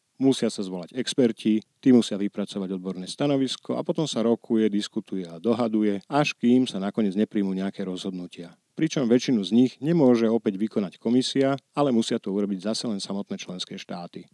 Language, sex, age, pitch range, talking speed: Slovak, male, 50-69, 100-125 Hz, 165 wpm